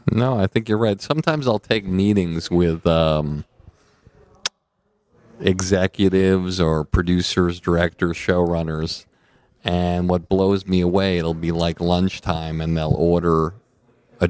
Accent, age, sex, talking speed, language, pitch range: American, 50-69, male, 120 wpm, English, 85-95 Hz